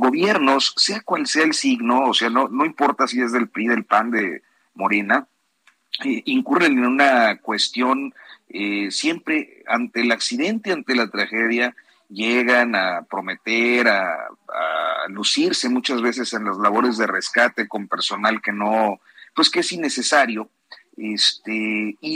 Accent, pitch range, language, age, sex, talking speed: Mexican, 115-170 Hz, Spanish, 50-69, male, 150 wpm